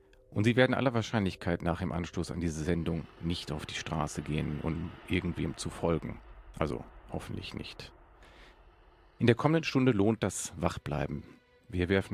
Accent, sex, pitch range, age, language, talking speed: German, male, 85-110 Hz, 40-59, German, 160 wpm